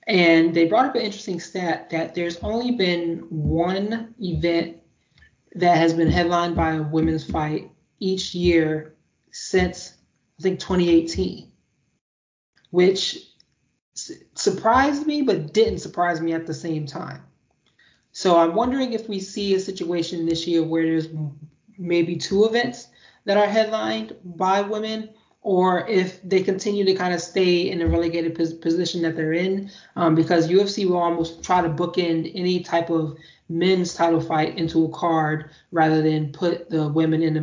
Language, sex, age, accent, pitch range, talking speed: English, male, 20-39, American, 160-190 Hz, 155 wpm